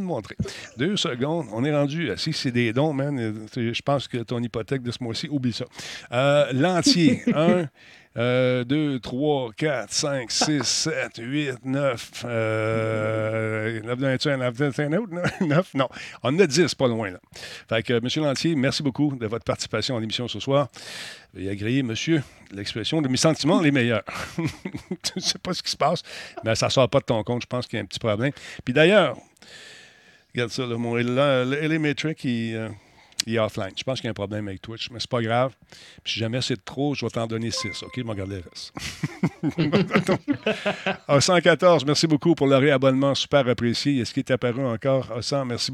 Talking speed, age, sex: 190 wpm, 50-69, male